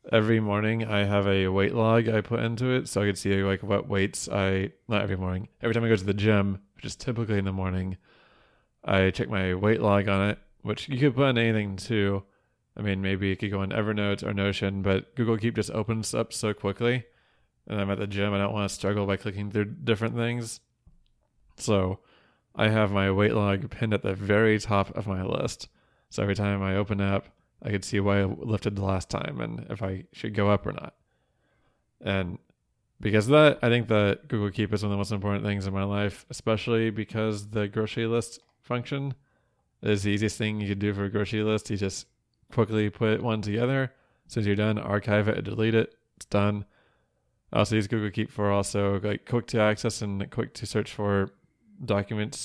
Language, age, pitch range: English, 20-39, 100-110 Hz